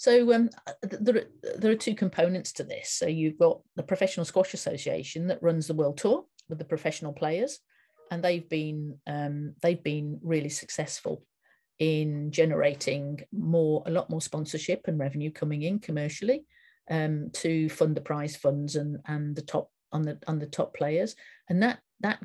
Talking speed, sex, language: 175 wpm, female, English